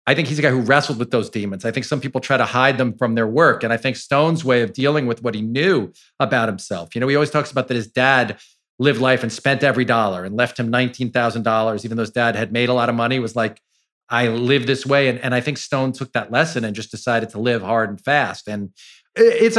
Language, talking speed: English, 265 wpm